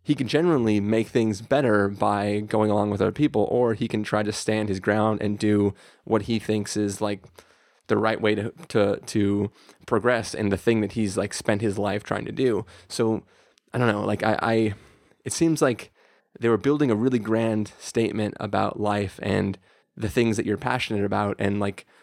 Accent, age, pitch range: American, 20-39, 100-110 Hz